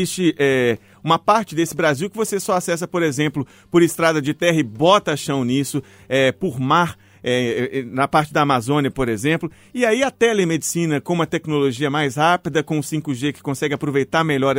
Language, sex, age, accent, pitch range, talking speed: Portuguese, male, 40-59, Brazilian, 145-190 Hz, 175 wpm